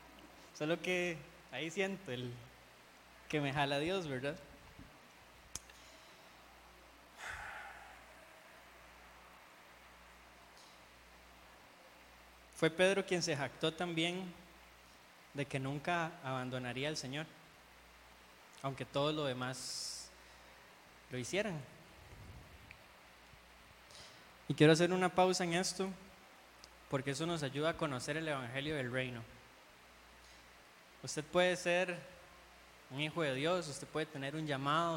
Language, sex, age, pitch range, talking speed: Spanish, male, 20-39, 125-170 Hz, 100 wpm